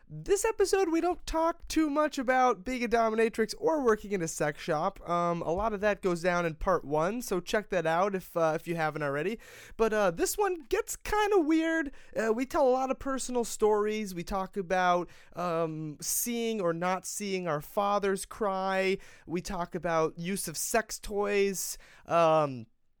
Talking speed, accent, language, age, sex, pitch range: 190 wpm, American, English, 30-49, male, 170-230 Hz